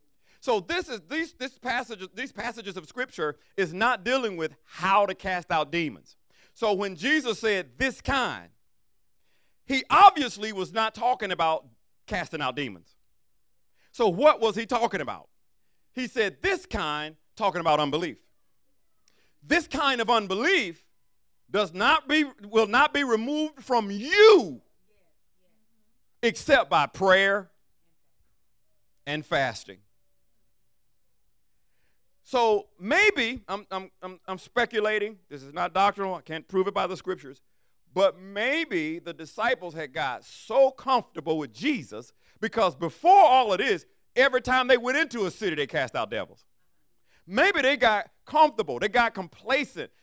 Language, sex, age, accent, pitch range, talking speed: English, male, 50-69, American, 185-265 Hz, 140 wpm